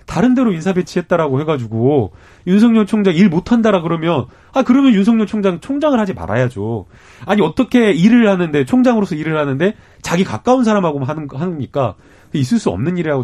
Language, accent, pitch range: Korean, native, 130-210 Hz